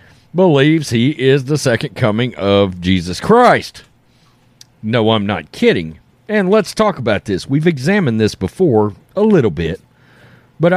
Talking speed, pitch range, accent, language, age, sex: 145 wpm, 110-145 Hz, American, English, 40-59, male